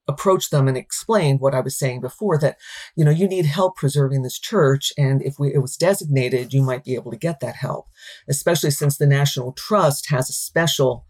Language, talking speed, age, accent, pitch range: English, 215 wpm, 40-59, American, 130-150 Hz